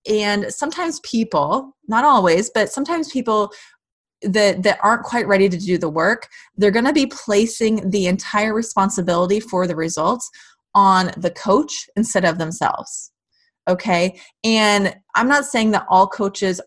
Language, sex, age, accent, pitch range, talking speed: English, female, 20-39, American, 180-230 Hz, 150 wpm